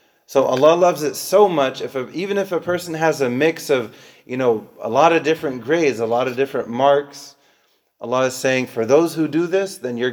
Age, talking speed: 30-49, 225 wpm